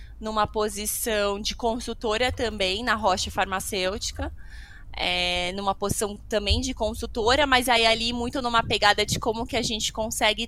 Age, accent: 20-39, Brazilian